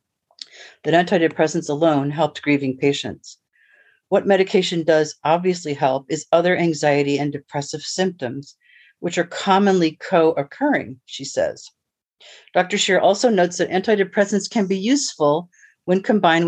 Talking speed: 125 wpm